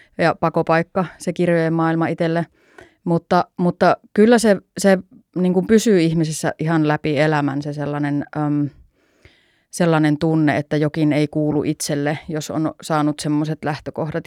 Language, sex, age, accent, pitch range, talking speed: Finnish, female, 30-49, native, 150-175 Hz, 125 wpm